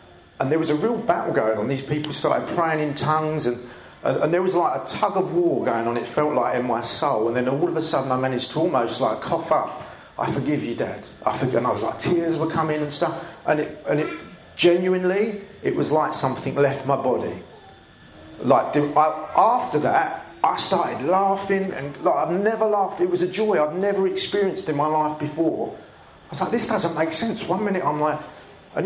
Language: English